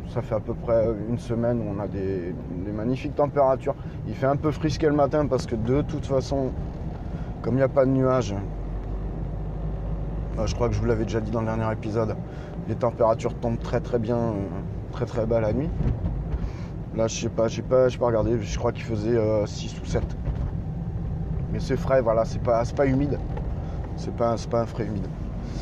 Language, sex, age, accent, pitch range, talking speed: French, male, 20-39, French, 115-140 Hz, 210 wpm